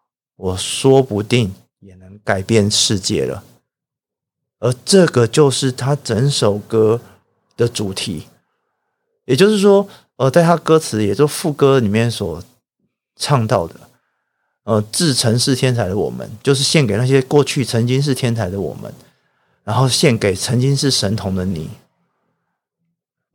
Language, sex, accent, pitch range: Chinese, male, native, 105-140 Hz